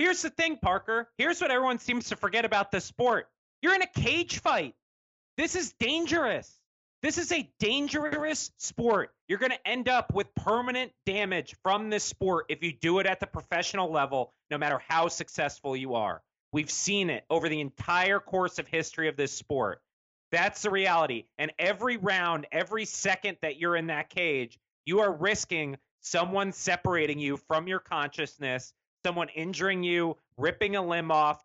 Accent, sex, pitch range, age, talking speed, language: American, male, 155-200 Hz, 30-49, 175 wpm, English